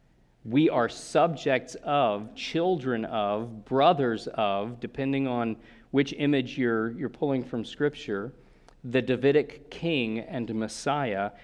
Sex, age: male, 40-59